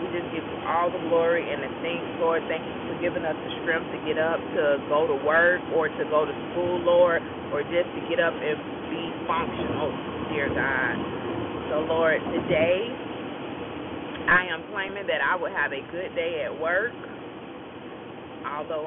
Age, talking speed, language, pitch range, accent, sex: 20-39, 180 wpm, English, 155-175 Hz, American, female